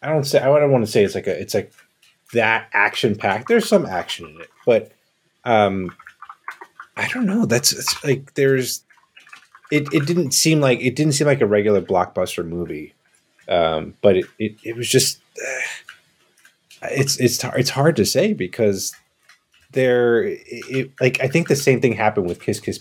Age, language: 30-49, English